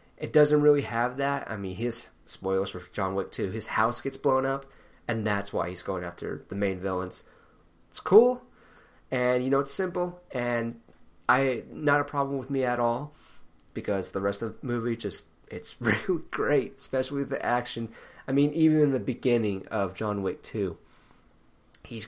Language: English